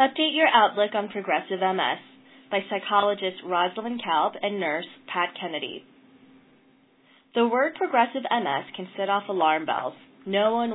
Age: 20-39